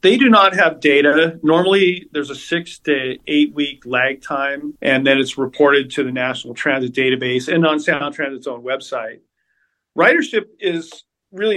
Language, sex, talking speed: English, male, 165 wpm